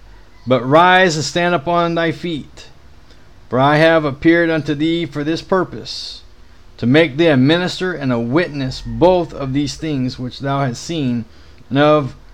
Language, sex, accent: English, male, American